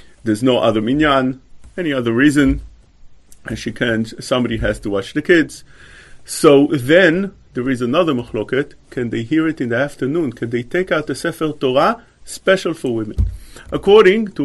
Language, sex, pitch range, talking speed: English, male, 115-165 Hz, 170 wpm